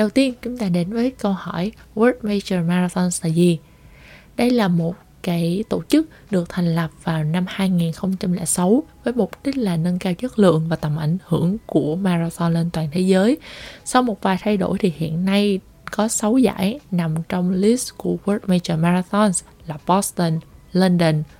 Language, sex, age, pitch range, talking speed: Vietnamese, female, 20-39, 165-205 Hz, 180 wpm